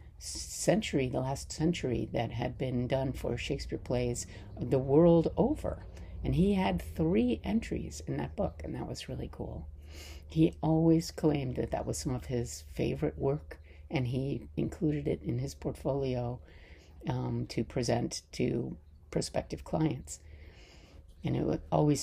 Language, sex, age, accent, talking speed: English, female, 50-69, American, 145 wpm